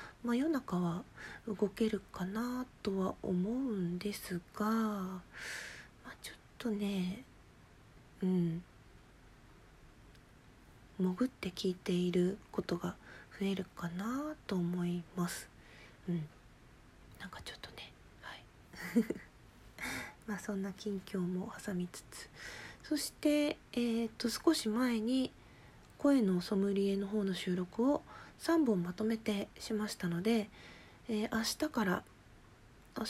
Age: 40-59